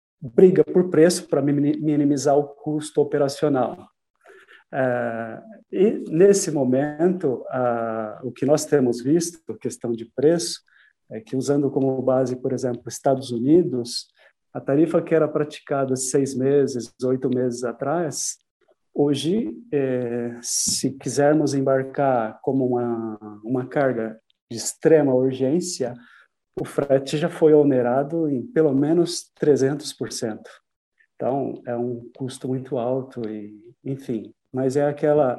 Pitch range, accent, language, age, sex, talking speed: 130-155 Hz, Brazilian, Portuguese, 50-69, male, 120 wpm